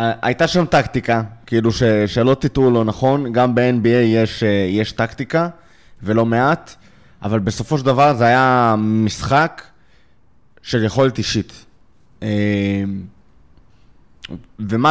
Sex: male